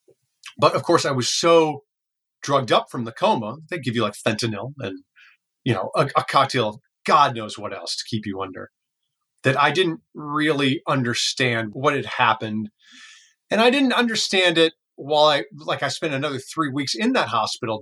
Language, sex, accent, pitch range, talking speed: English, male, American, 120-170 Hz, 185 wpm